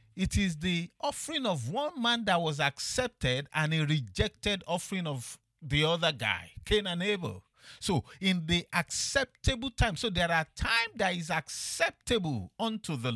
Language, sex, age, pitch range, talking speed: English, male, 50-69, 125-210 Hz, 160 wpm